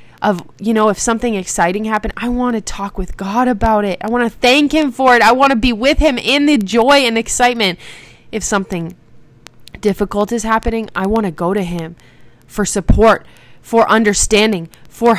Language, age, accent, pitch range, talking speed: English, 20-39, American, 170-215 Hz, 195 wpm